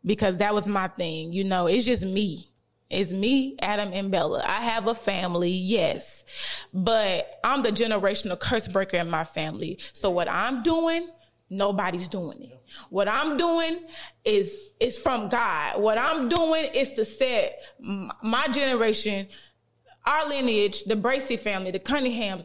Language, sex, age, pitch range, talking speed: English, female, 20-39, 200-270 Hz, 155 wpm